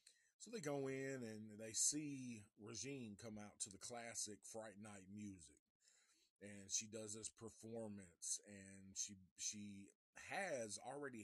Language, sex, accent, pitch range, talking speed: English, male, American, 100-120 Hz, 140 wpm